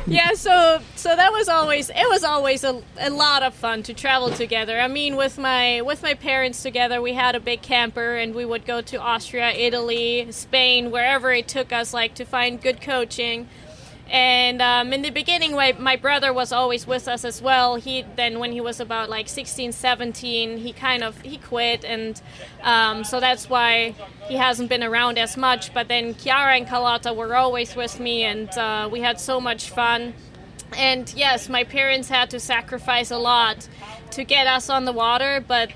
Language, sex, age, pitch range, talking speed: English, female, 20-39, 235-260 Hz, 200 wpm